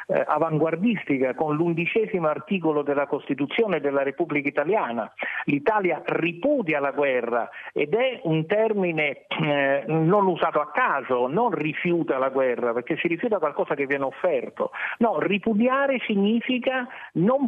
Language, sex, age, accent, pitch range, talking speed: Italian, male, 50-69, native, 145-205 Hz, 130 wpm